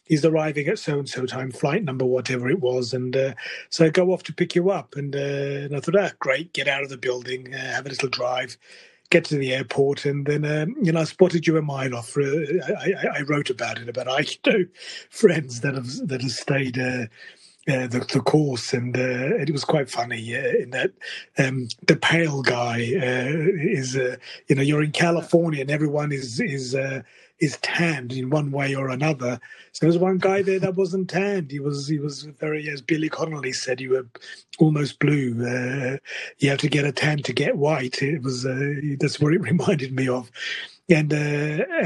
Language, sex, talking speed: English, male, 220 wpm